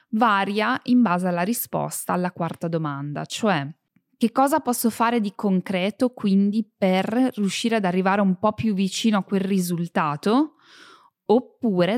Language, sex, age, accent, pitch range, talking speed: Italian, female, 20-39, native, 160-215 Hz, 140 wpm